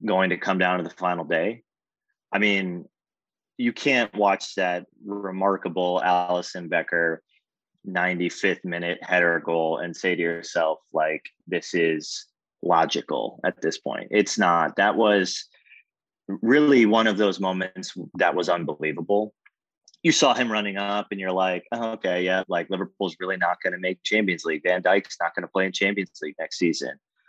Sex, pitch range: male, 90-110 Hz